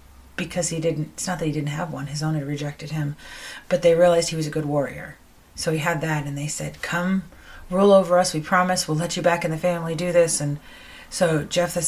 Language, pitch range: English, 145-175 Hz